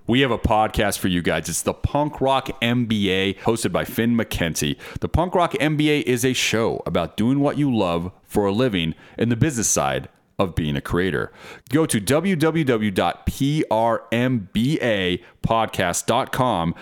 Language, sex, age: English, male, 30-49